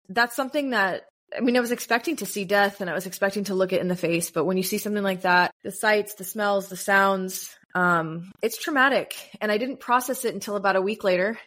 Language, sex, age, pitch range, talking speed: English, female, 20-39, 185-215 Hz, 245 wpm